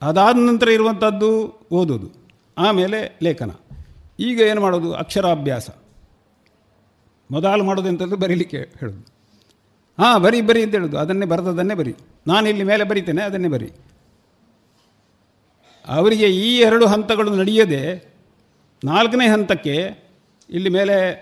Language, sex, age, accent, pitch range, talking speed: Kannada, male, 50-69, native, 125-210 Hz, 105 wpm